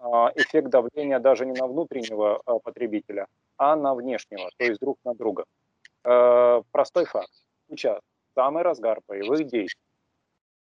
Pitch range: 120-140 Hz